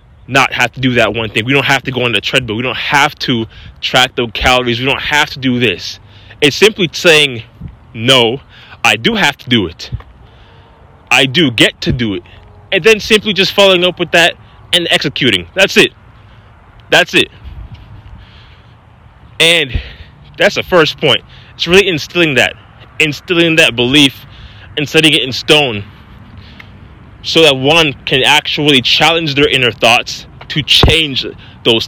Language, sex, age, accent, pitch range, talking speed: English, male, 20-39, American, 110-155 Hz, 165 wpm